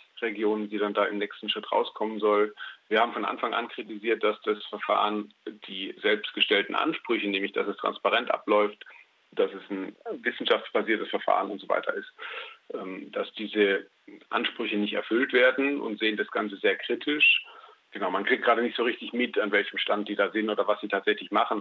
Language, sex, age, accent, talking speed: German, male, 40-59, German, 185 wpm